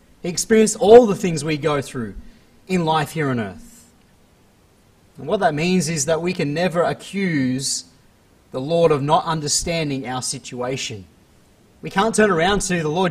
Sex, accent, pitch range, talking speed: male, Australian, 130-180 Hz, 170 wpm